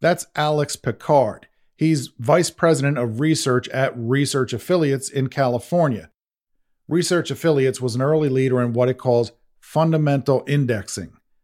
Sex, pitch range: male, 120-145 Hz